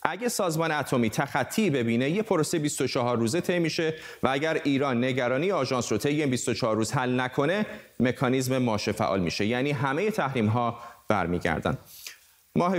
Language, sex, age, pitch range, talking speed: Persian, male, 30-49, 120-155 Hz, 150 wpm